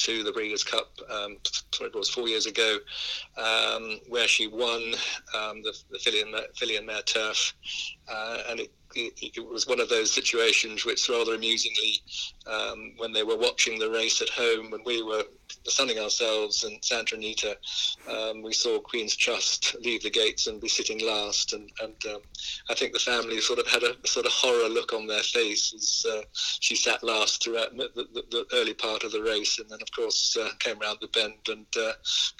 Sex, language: male, English